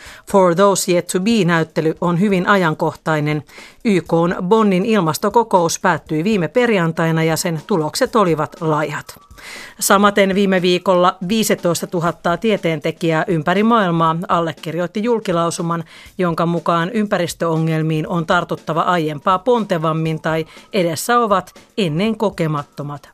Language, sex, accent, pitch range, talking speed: Finnish, female, native, 165-205 Hz, 110 wpm